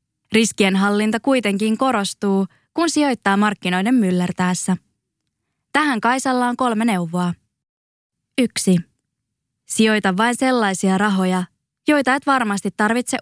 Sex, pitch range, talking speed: female, 190-245 Hz, 95 wpm